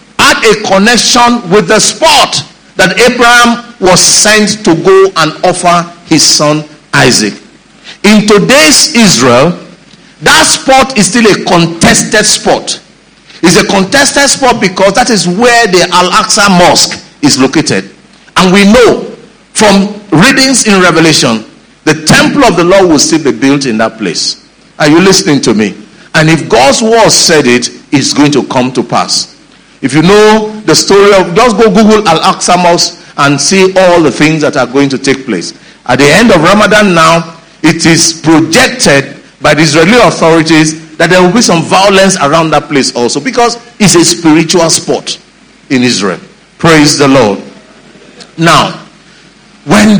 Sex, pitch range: male, 160-220 Hz